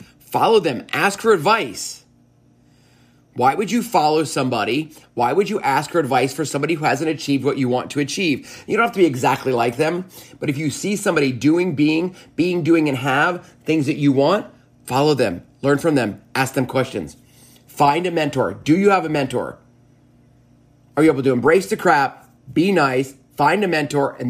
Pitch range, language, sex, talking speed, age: 125-155 Hz, English, male, 195 wpm, 30-49